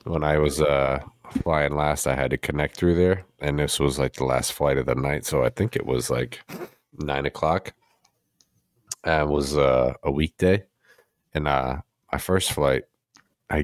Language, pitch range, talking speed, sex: English, 70-95 Hz, 185 wpm, male